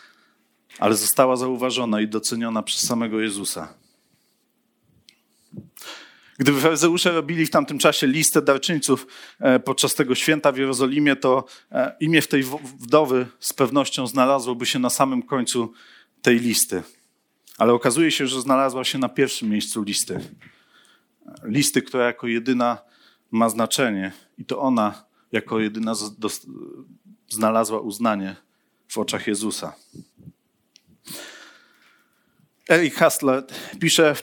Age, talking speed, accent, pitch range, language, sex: 40-59, 115 wpm, native, 120-150 Hz, Polish, male